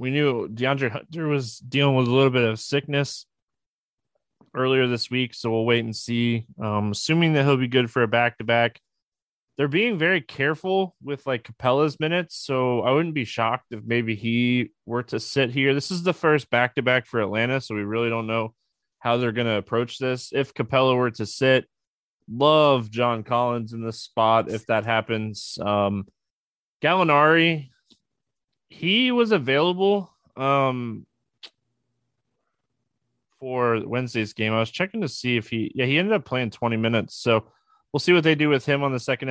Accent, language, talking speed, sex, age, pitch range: American, English, 175 wpm, male, 20-39, 115-145 Hz